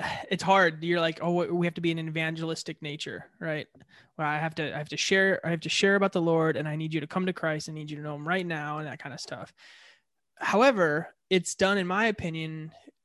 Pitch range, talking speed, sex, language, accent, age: 155-180 Hz, 255 wpm, male, English, American, 20-39